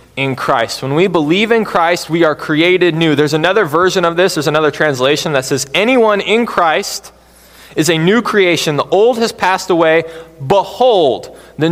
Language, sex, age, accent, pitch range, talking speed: English, male, 20-39, American, 145-205 Hz, 180 wpm